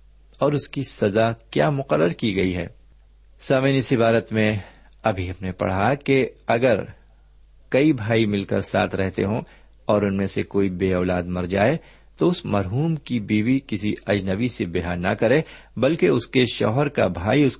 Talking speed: 175 wpm